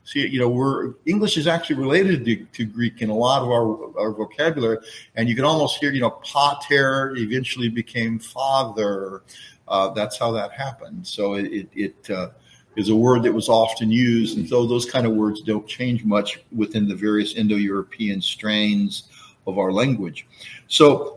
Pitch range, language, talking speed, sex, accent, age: 110-150 Hz, English, 175 wpm, male, American, 50-69